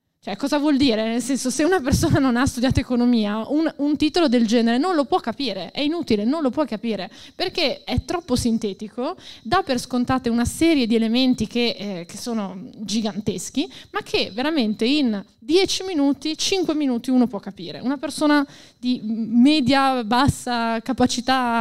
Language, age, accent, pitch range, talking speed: Italian, 20-39, native, 220-275 Hz, 170 wpm